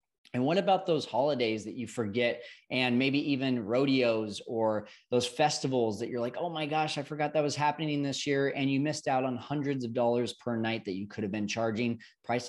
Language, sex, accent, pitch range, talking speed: English, male, American, 110-140 Hz, 215 wpm